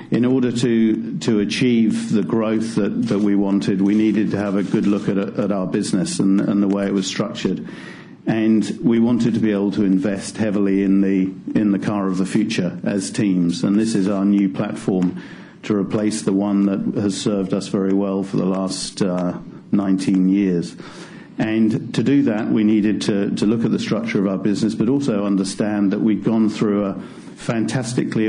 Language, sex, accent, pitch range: English, male, British, 95-110 Hz